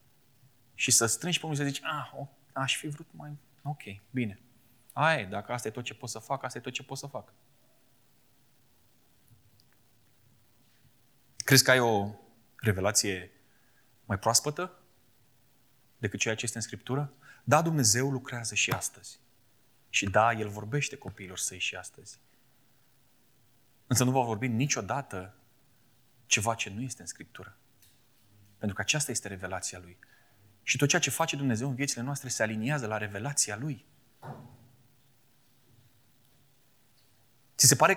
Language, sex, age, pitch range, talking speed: Romanian, male, 20-39, 115-135 Hz, 140 wpm